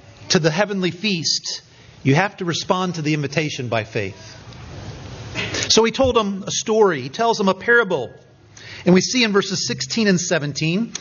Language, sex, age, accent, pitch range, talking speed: English, male, 40-59, American, 140-200 Hz, 175 wpm